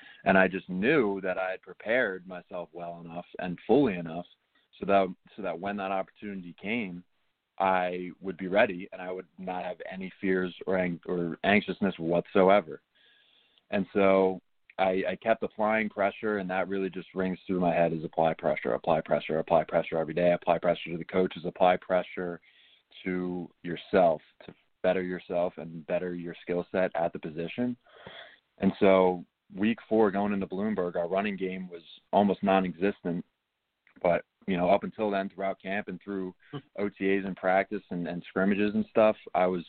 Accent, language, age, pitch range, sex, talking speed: American, English, 20-39, 85-95 Hz, male, 170 wpm